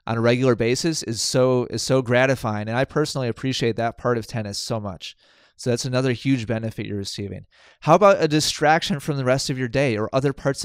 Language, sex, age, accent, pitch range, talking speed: English, male, 20-39, American, 110-135 Hz, 220 wpm